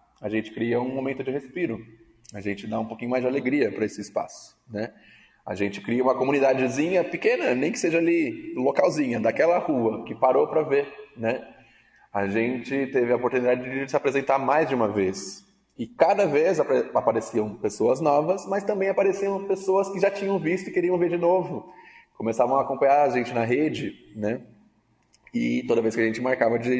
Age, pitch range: 20-39, 115-160 Hz